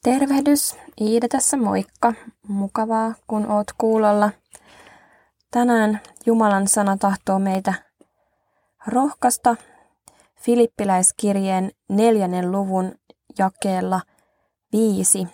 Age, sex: 20-39, female